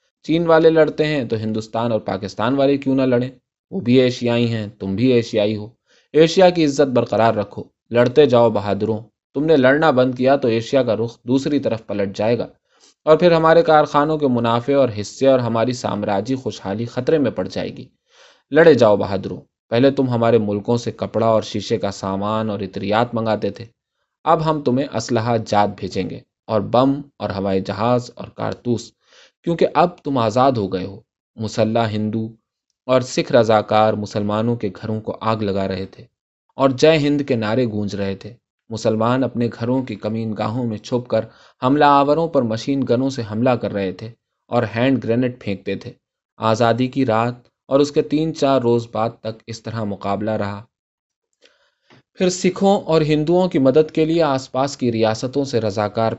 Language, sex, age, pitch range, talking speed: Urdu, male, 20-39, 110-135 Hz, 185 wpm